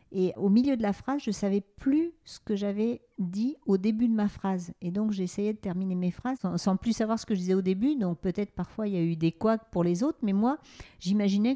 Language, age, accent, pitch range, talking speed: French, 50-69, French, 180-240 Hz, 265 wpm